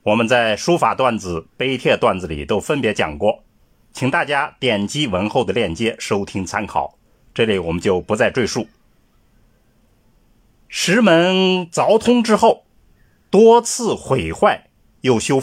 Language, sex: Chinese, male